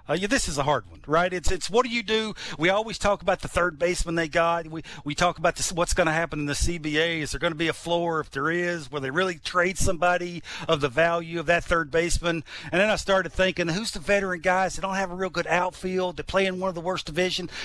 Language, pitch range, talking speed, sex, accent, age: English, 160-190 Hz, 275 wpm, male, American, 50-69